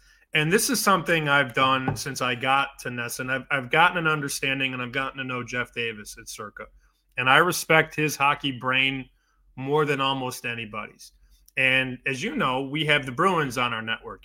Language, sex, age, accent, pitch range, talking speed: English, male, 20-39, American, 135-165 Hz, 190 wpm